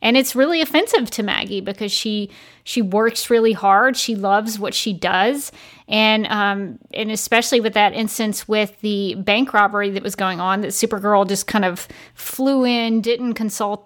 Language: English